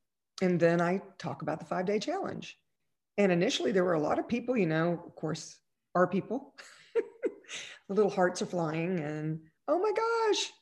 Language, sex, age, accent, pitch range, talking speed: English, female, 40-59, American, 165-215 Hz, 175 wpm